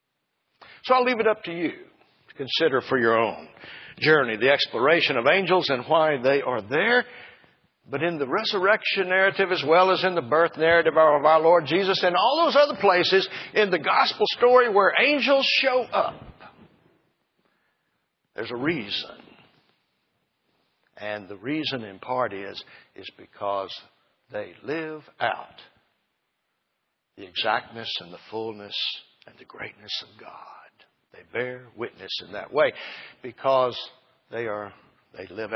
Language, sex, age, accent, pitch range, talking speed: English, male, 60-79, American, 130-200 Hz, 145 wpm